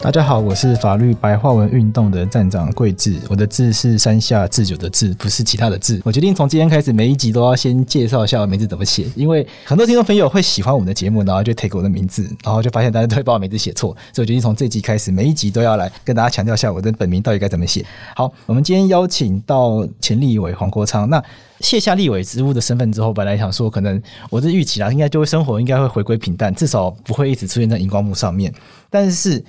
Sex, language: male, Chinese